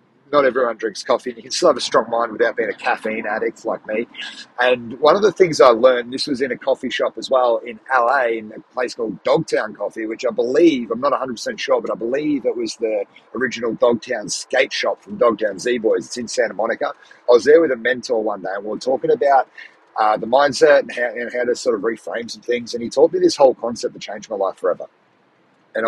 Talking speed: 240 wpm